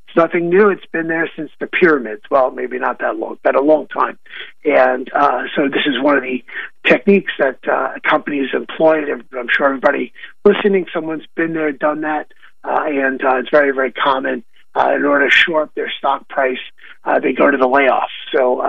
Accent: American